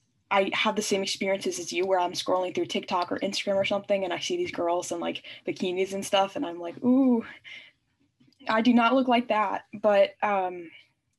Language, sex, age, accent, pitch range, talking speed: English, female, 10-29, American, 180-220 Hz, 205 wpm